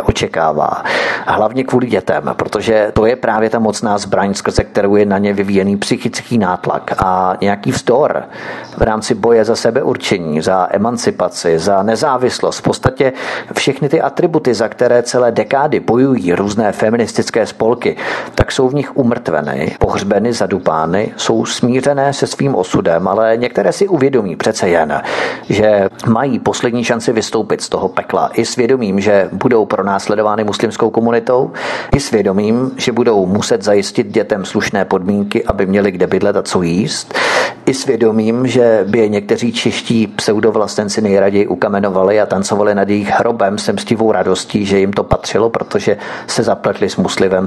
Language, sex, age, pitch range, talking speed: Czech, male, 40-59, 100-120 Hz, 150 wpm